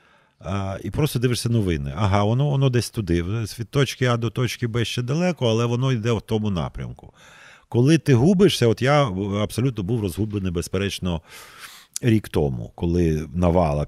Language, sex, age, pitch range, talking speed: Ukrainian, male, 40-59, 85-120 Hz, 160 wpm